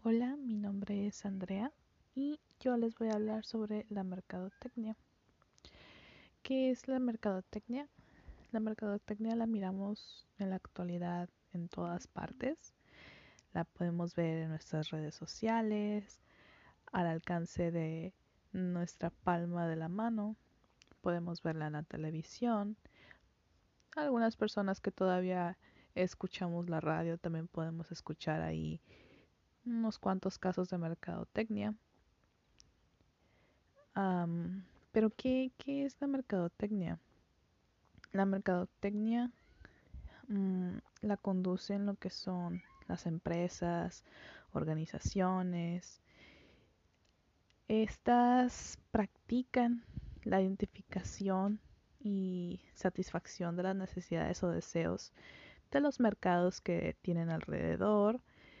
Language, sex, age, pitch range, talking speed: Spanish, female, 20-39, 175-220 Hz, 100 wpm